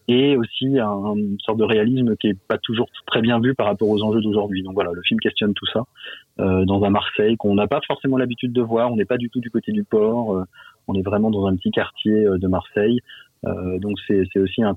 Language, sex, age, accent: French, male, 30-49, French